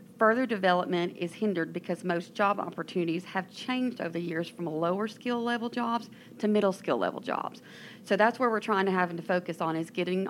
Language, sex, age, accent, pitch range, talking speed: English, female, 40-59, American, 170-195 Hz, 205 wpm